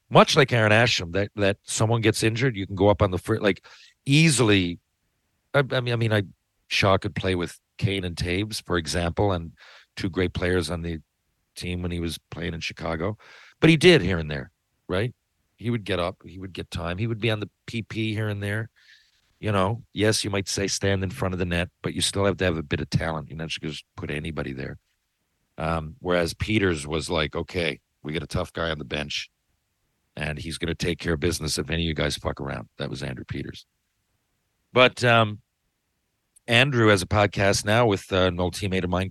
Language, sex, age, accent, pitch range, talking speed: English, male, 50-69, American, 85-110 Hz, 225 wpm